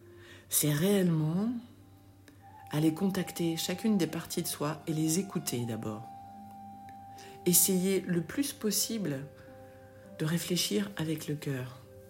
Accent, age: French, 60-79